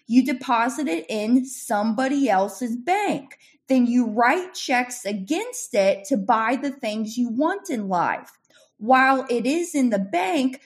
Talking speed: 150 wpm